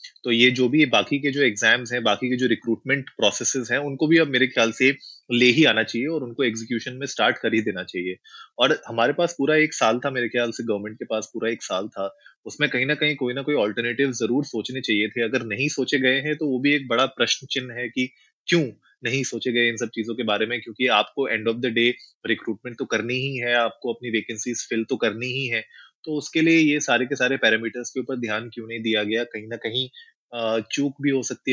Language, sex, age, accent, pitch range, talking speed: Hindi, male, 20-39, native, 115-130 Hz, 245 wpm